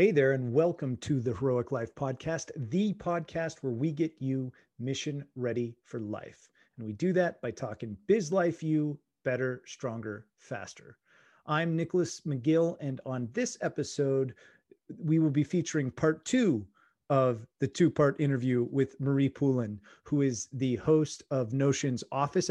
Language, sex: English, male